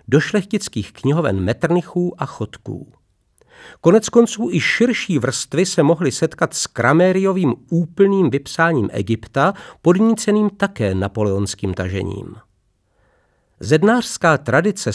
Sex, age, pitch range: male, 50-69, 120-180 Hz